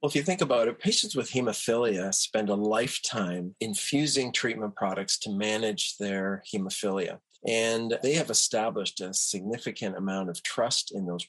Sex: male